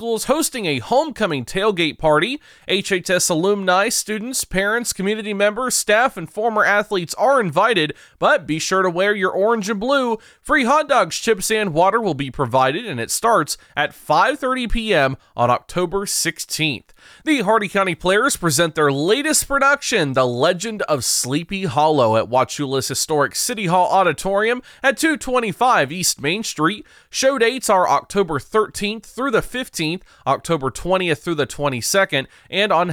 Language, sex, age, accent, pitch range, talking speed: English, male, 30-49, American, 150-220 Hz, 155 wpm